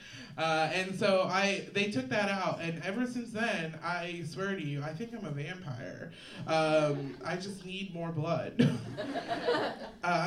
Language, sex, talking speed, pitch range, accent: English, male, 165 wpm, 150-200 Hz, American